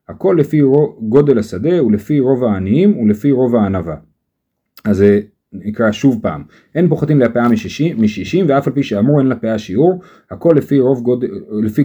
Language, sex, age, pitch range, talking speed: Hebrew, male, 30-49, 115-160 Hz, 170 wpm